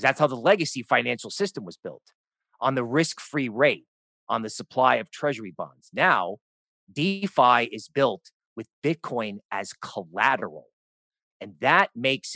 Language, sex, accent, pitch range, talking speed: English, male, American, 120-165 Hz, 145 wpm